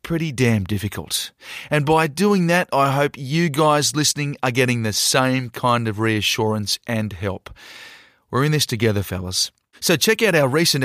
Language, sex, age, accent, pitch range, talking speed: English, male, 30-49, Australian, 105-130 Hz, 170 wpm